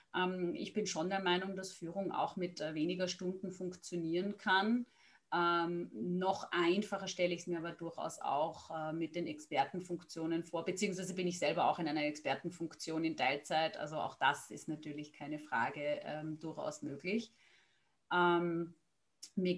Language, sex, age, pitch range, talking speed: German, female, 30-49, 165-185 Hz, 155 wpm